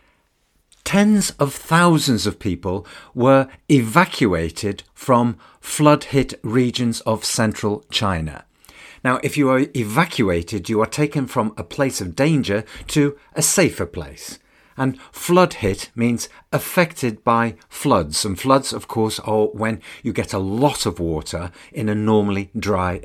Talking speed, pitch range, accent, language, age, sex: 135 wpm, 100-135 Hz, British, English, 50-69, male